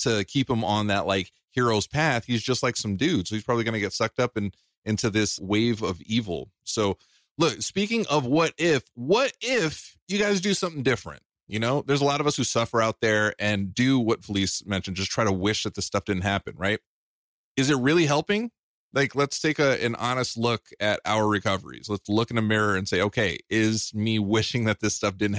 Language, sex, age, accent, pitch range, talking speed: English, male, 30-49, American, 105-145 Hz, 220 wpm